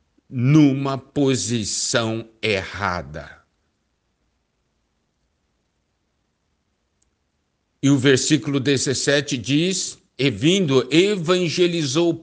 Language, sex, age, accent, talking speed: Portuguese, male, 60-79, Brazilian, 55 wpm